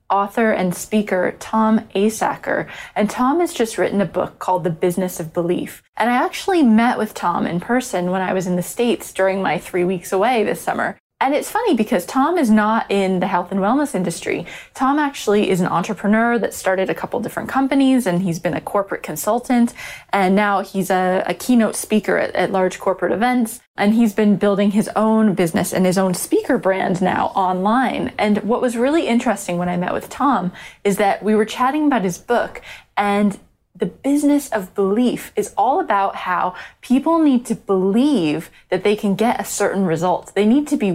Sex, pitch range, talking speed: female, 185-245 Hz, 200 wpm